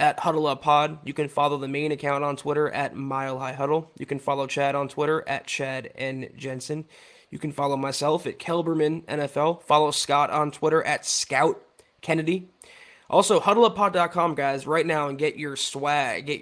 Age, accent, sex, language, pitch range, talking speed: 20-39, American, male, English, 140-160 Hz, 185 wpm